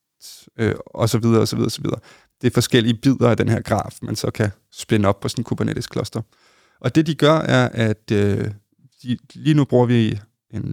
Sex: male